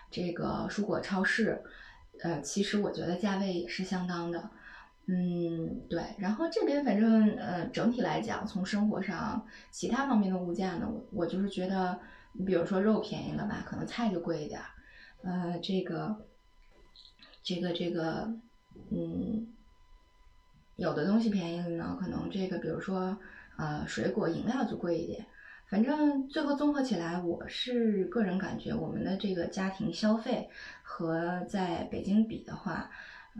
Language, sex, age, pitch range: Chinese, female, 20-39, 180-225 Hz